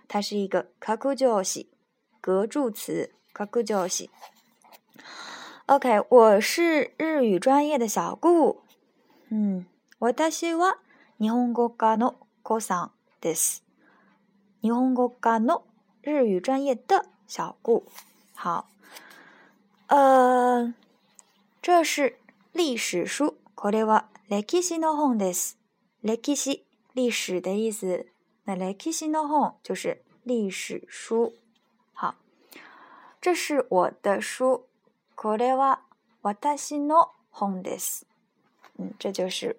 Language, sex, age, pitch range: Chinese, female, 20-39, 200-265 Hz